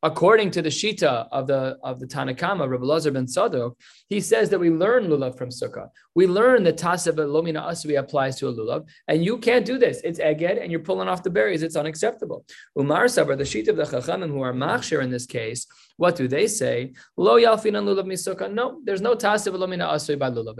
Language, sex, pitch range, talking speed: English, male, 135-185 Hz, 215 wpm